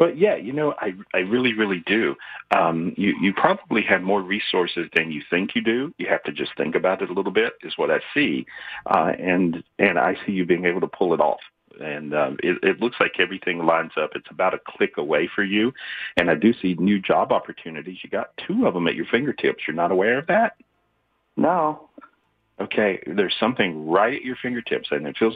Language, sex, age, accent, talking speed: English, male, 50-69, American, 220 wpm